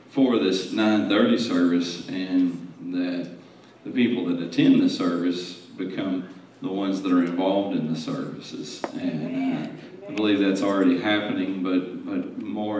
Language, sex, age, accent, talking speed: English, male, 40-59, American, 145 wpm